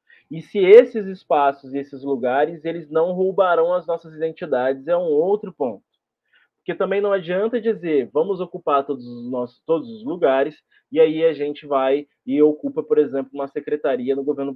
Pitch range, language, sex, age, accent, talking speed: 150-210 Hz, Portuguese, male, 20-39, Brazilian, 175 wpm